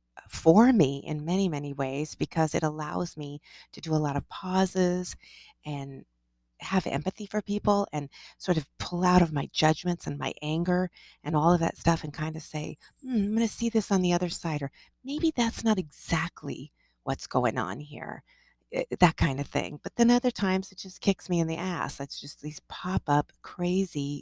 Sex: female